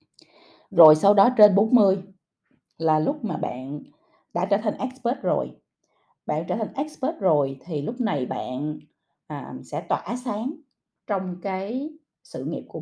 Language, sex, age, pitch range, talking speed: Vietnamese, female, 20-39, 155-225 Hz, 145 wpm